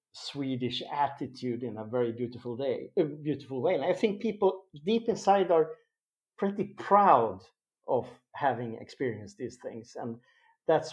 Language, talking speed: English, 145 wpm